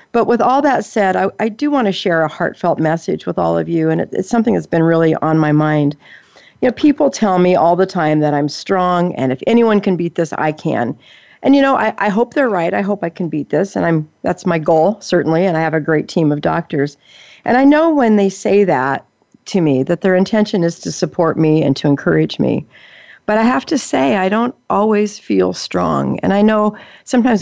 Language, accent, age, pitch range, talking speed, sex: English, American, 50-69, 160-220 Hz, 240 wpm, female